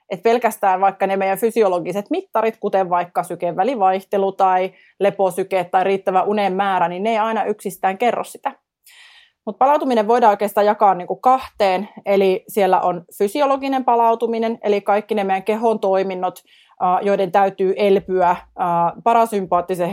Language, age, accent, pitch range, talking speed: Finnish, 30-49, native, 185-220 Hz, 140 wpm